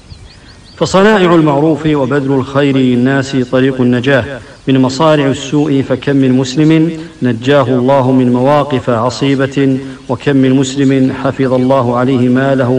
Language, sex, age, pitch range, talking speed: English, male, 50-69, 125-140 Hz, 115 wpm